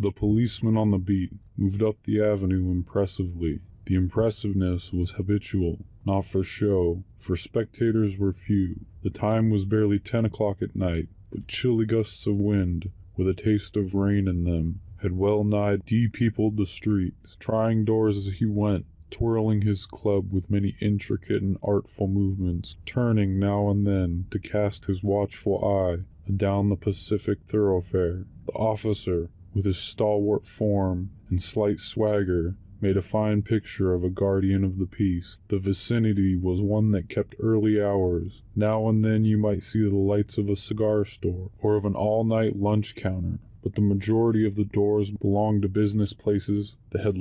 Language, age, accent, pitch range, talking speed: English, 20-39, American, 95-105 Hz, 165 wpm